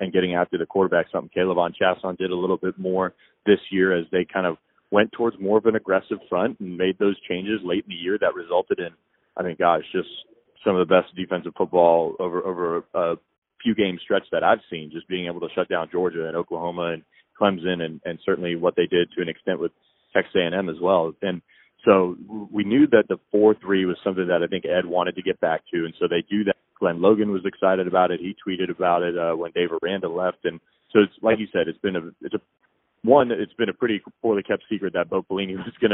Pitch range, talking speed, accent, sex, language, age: 85-100 Hz, 240 wpm, American, male, English, 30-49